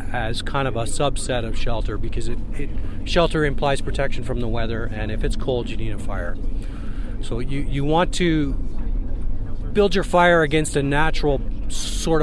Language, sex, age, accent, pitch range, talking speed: English, male, 40-59, American, 110-145 Hz, 175 wpm